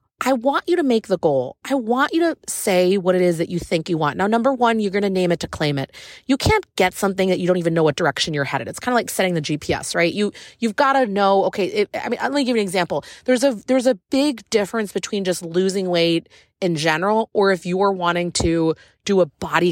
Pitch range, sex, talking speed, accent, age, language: 170-250 Hz, female, 270 wpm, American, 30-49, English